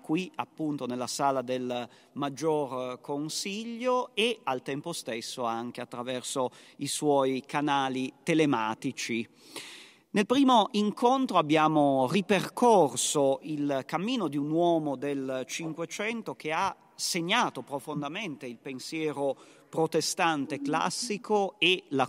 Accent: native